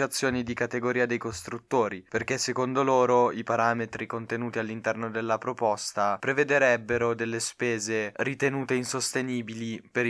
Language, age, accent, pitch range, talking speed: Italian, 20-39, native, 115-135 Hz, 115 wpm